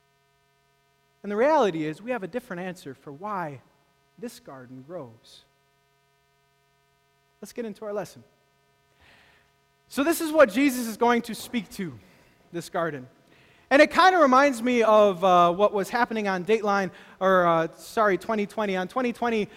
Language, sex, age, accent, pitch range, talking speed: English, male, 20-39, American, 160-225 Hz, 155 wpm